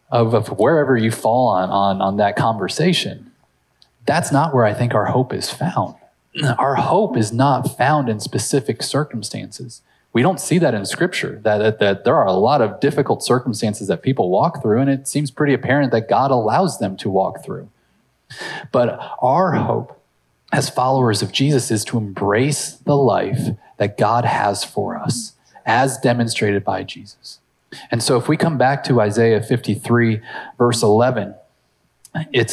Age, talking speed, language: 30-49, 170 wpm, English